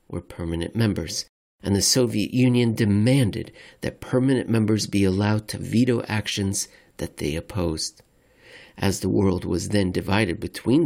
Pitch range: 95-120 Hz